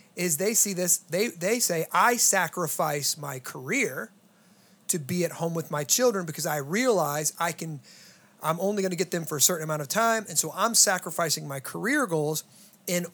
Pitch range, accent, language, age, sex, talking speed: 160-200 Hz, American, English, 30-49, male, 195 wpm